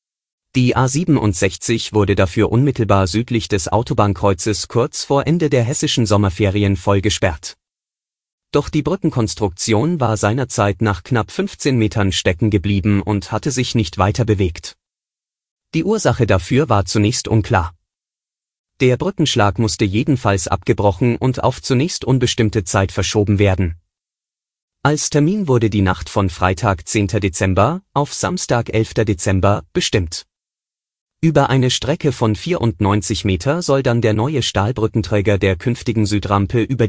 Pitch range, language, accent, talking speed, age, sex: 100-125 Hz, German, German, 130 wpm, 30-49, male